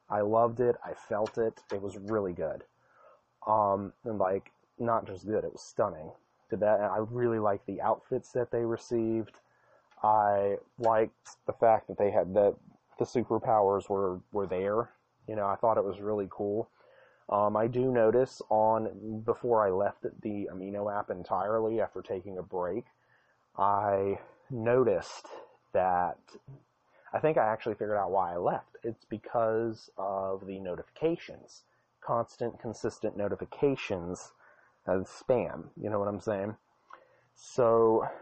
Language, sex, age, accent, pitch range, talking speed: English, male, 30-49, American, 100-120 Hz, 150 wpm